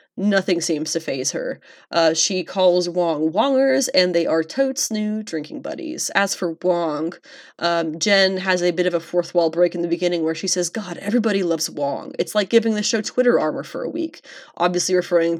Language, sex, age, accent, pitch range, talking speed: English, female, 20-39, American, 170-215 Hz, 205 wpm